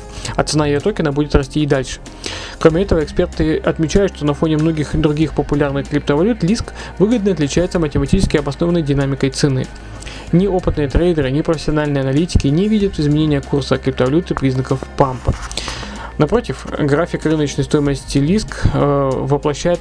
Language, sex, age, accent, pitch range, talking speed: Russian, male, 20-39, native, 140-170 Hz, 140 wpm